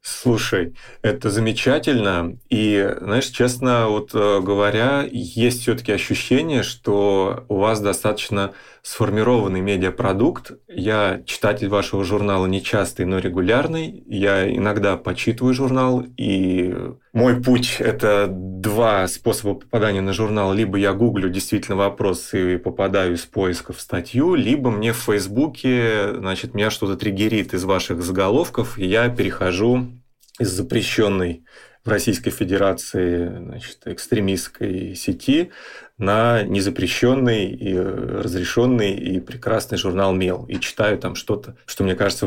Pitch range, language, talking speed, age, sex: 95-120 Hz, Russian, 125 wpm, 20-39, male